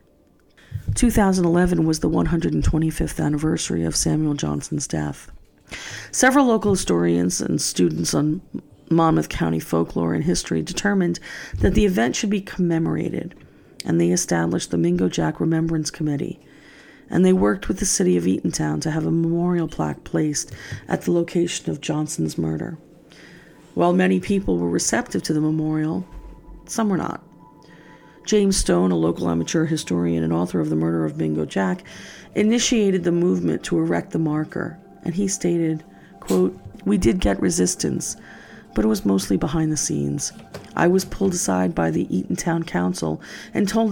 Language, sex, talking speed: English, female, 155 wpm